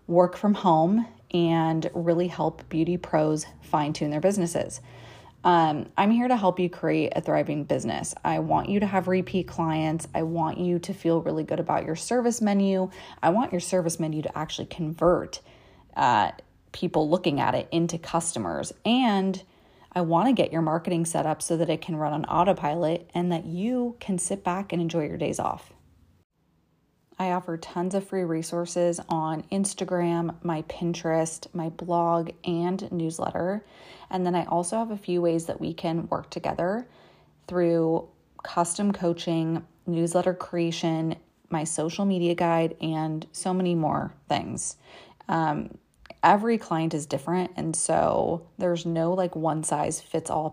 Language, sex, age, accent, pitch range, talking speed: English, female, 30-49, American, 160-180 Hz, 160 wpm